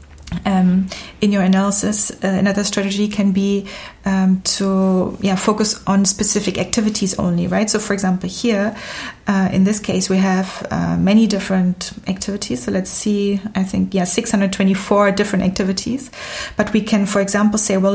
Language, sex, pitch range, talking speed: English, female, 190-205 Hz, 155 wpm